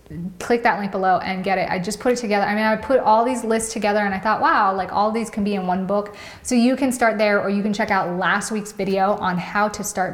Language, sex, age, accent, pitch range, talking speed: English, female, 20-39, American, 190-225 Hz, 290 wpm